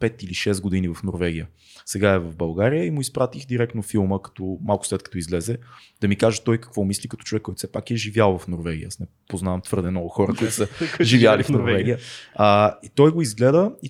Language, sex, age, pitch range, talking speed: Bulgarian, male, 20-39, 105-145 Hz, 220 wpm